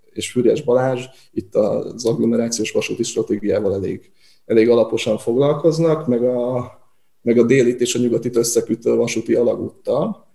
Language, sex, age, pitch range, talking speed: Hungarian, male, 20-39, 115-135 Hz, 135 wpm